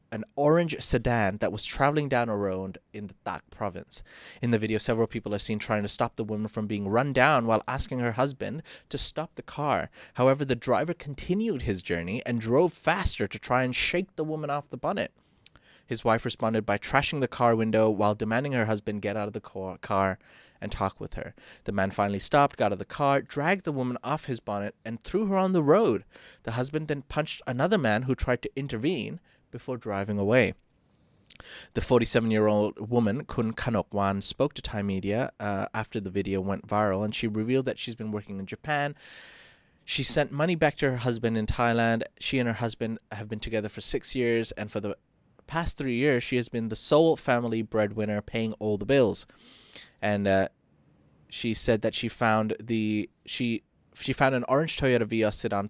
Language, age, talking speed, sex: English, 20-39, 200 wpm, male